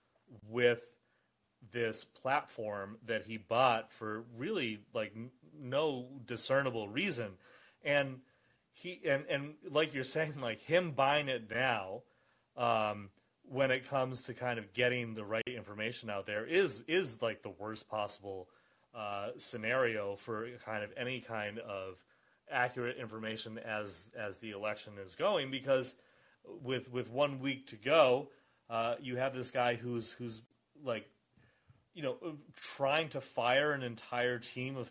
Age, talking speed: 30-49, 145 wpm